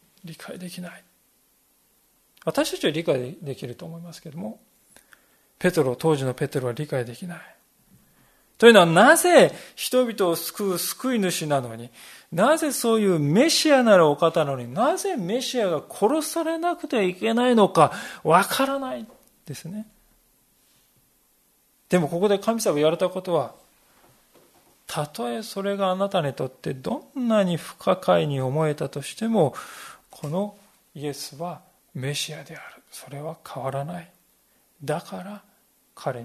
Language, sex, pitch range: Japanese, male, 150-220 Hz